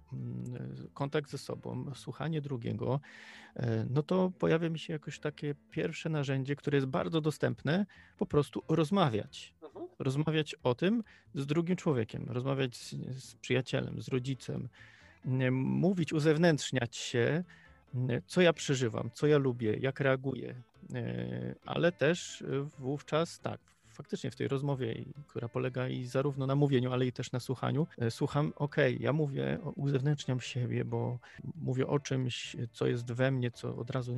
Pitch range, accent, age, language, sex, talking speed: 125-155 Hz, native, 40-59, Polish, male, 140 wpm